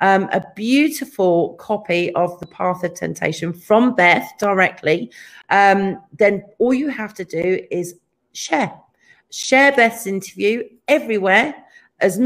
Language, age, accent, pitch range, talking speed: English, 40-59, British, 175-235 Hz, 125 wpm